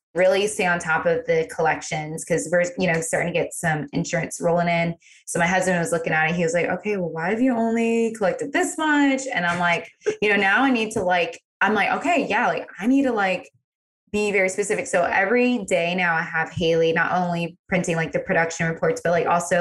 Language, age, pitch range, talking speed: English, 20-39, 165-200 Hz, 235 wpm